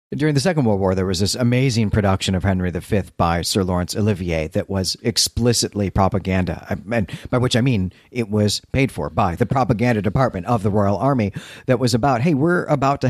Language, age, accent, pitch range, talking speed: English, 40-59, American, 95-120 Hz, 200 wpm